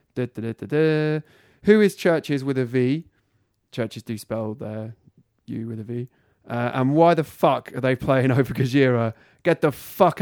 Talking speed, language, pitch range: 195 wpm, English, 120-150 Hz